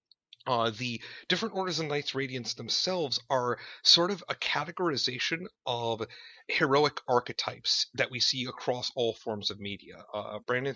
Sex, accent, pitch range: male, American, 115-150 Hz